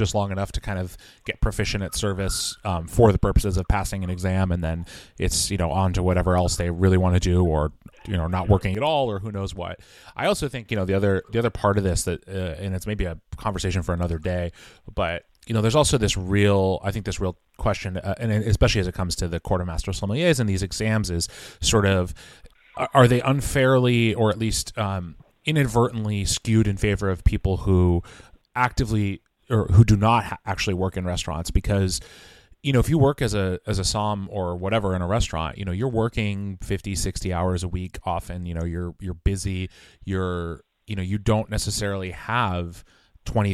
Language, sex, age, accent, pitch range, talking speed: English, male, 30-49, American, 90-105 Hz, 215 wpm